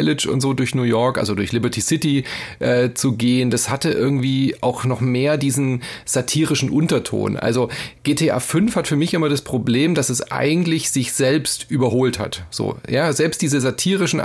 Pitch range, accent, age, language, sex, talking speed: 120-150 Hz, German, 30-49, German, male, 170 wpm